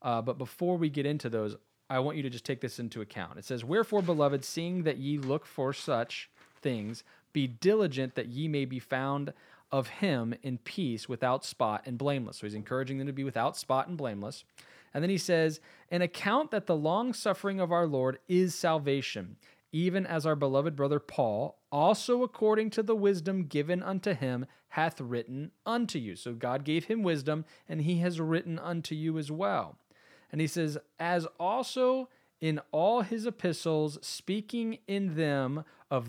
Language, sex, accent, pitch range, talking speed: English, male, American, 130-175 Hz, 185 wpm